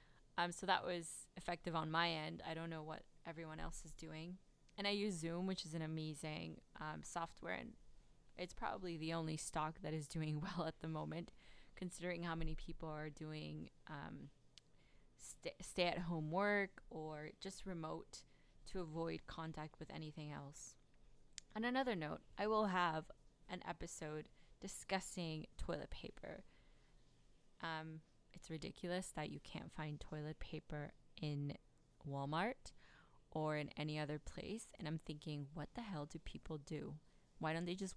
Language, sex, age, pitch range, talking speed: English, female, 20-39, 150-175 Hz, 155 wpm